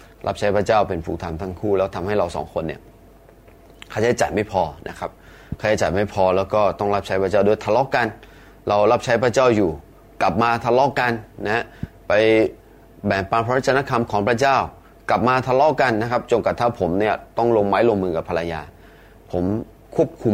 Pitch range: 95-120 Hz